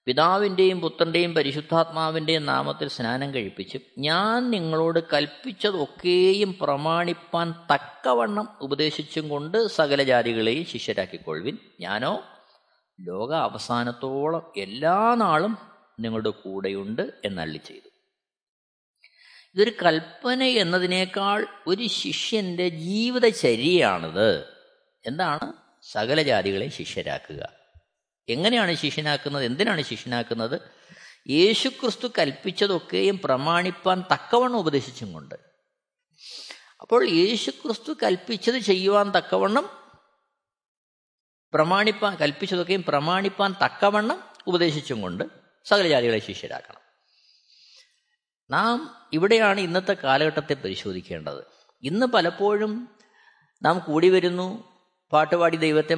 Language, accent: Malayalam, native